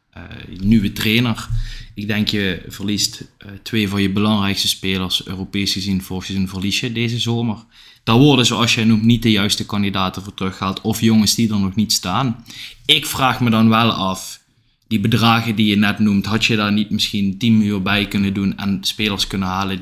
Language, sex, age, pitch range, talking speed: Dutch, male, 20-39, 105-130 Hz, 195 wpm